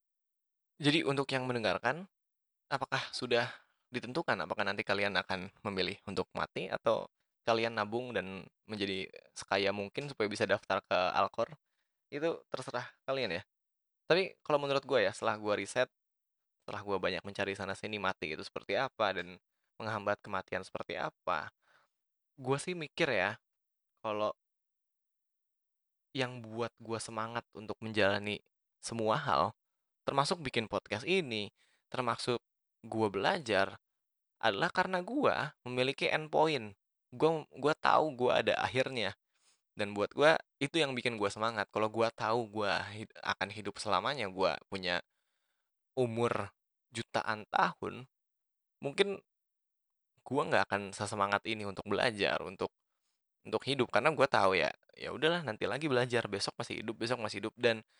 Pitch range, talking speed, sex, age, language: 100-130 Hz, 135 wpm, male, 20-39, Indonesian